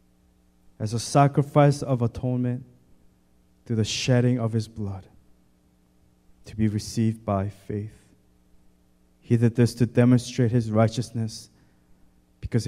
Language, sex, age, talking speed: English, male, 20-39, 115 wpm